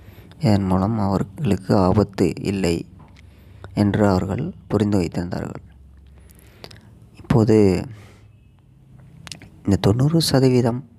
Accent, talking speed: native, 70 wpm